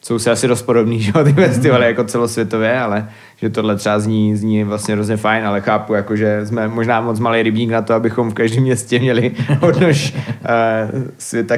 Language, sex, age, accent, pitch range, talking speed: Czech, male, 20-39, native, 110-125 Hz, 190 wpm